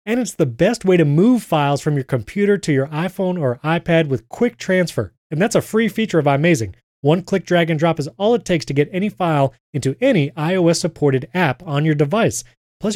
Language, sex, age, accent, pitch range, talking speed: English, male, 30-49, American, 135-175 Hz, 220 wpm